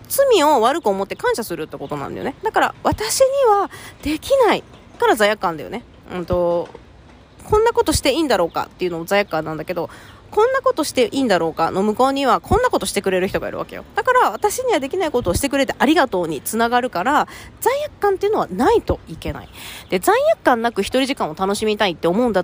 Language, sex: Japanese, female